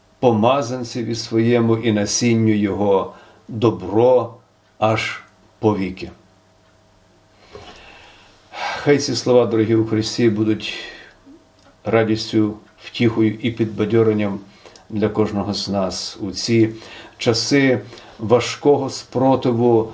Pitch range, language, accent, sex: 105-120 Hz, Ukrainian, native, male